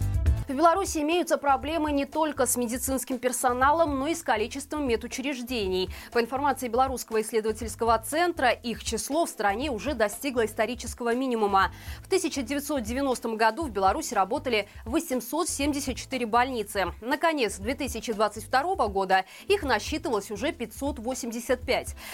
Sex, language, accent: female, Russian, native